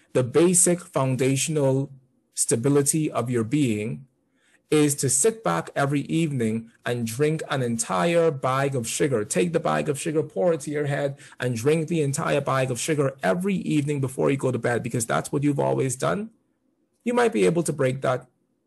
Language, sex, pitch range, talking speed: English, male, 125-175 Hz, 185 wpm